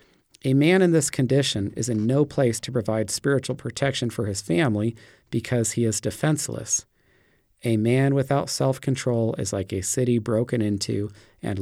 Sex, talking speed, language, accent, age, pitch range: male, 160 wpm, English, American, 40-59, 110-135 Hz